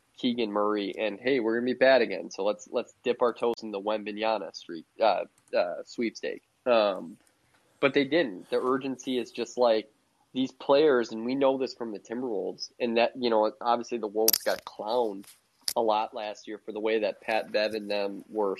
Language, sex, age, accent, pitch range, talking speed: English, male, 20-39, American, 110-130 Hz, 200 wpm